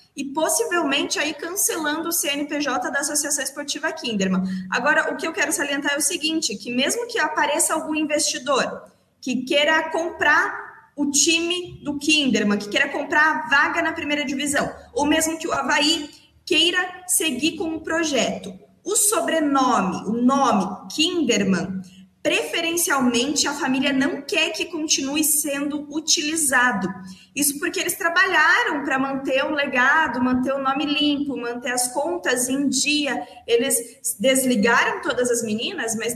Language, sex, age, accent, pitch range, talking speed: Portuguese, female, 20-39, Brazilian, 255-320 Hz, 150 wpm